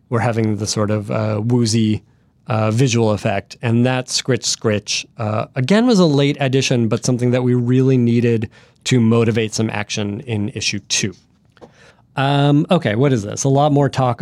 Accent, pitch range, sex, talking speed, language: American, 120-150 Hz, male, 175 wpm, English